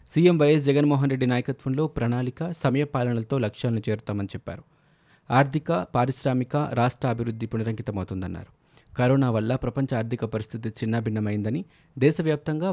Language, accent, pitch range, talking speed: Telugu, native, 110-140 Hz, 110 wpm